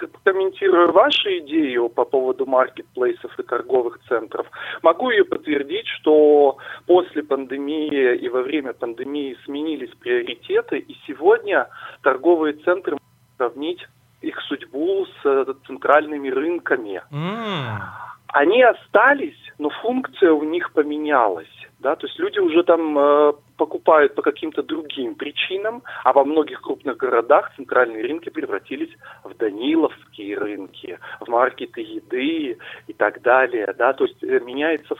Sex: male